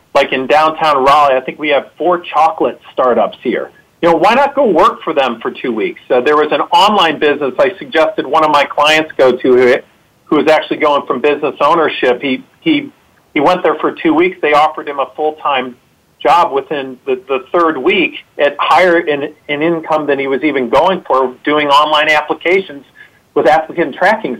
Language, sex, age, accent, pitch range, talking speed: English, male, 40-59, American, 145-180 Hz, 200 wpm